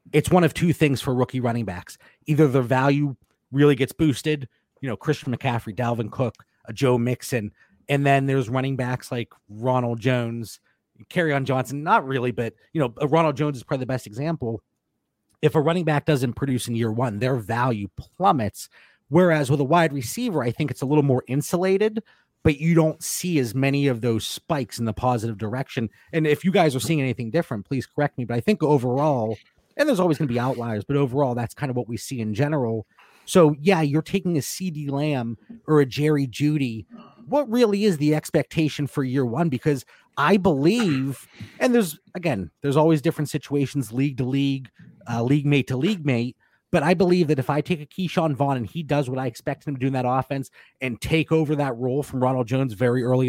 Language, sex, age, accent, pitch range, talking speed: English, male, 30-49, American, 125-155 Hz, 210 wpm